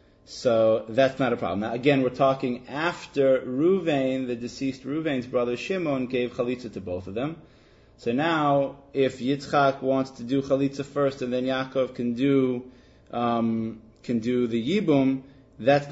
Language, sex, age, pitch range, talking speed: English, male, 30-49, 120-140 Hz, 160 wpm